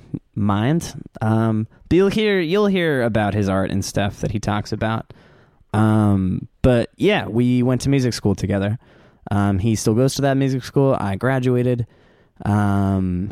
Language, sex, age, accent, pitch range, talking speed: English, male, 20-39, American, 105-135 Hz, 160 wpm